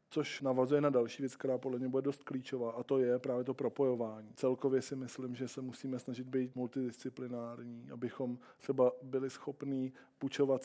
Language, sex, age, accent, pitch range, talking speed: Czech, male, 20-39, native, 125-135 Hz, 175 wpm